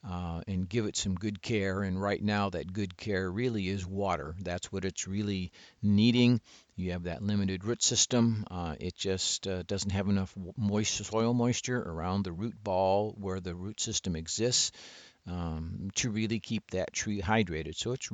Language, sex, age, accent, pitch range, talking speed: English, male, 50-69, American, 90-110 Hz, 180 wpm